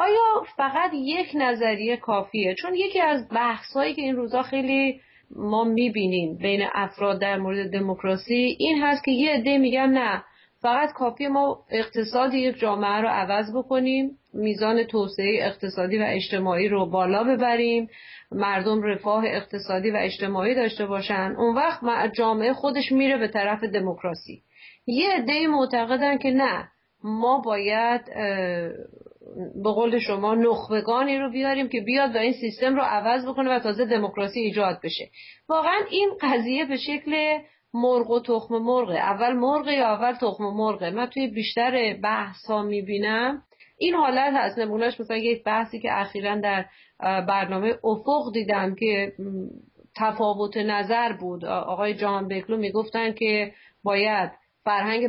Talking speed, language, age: 145 wpm, Persian, 40-59